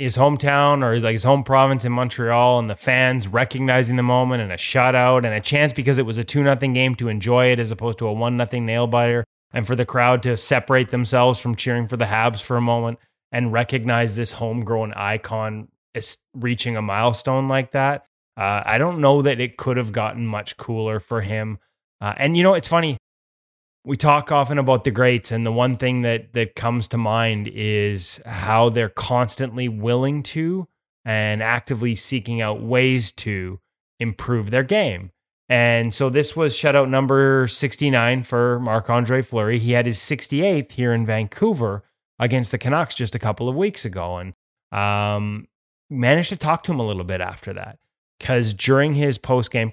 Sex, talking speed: male, 190 wpm